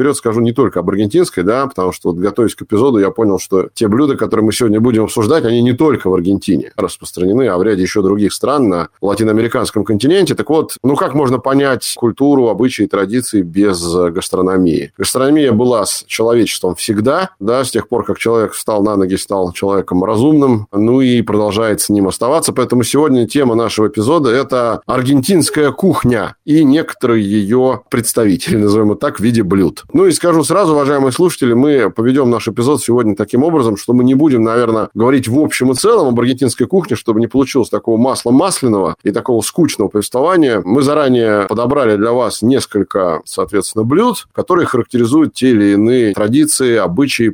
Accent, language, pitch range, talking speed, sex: native, Russian, 105-135 Hz, 180 wpm, male